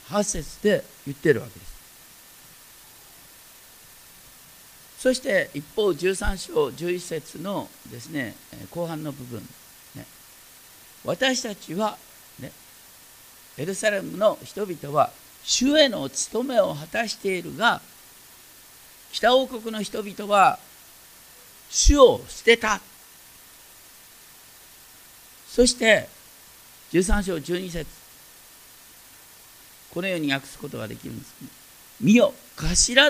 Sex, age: male, 50-69